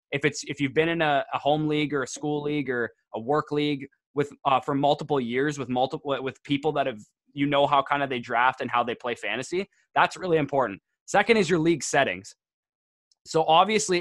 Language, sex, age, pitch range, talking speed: English, male, 20-39, 130-155 Hz, 220 wpm